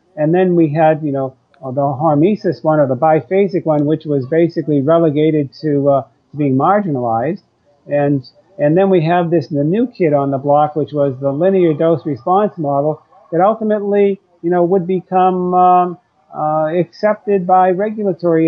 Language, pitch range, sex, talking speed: English, 145-175 Hz, male, 160 wpm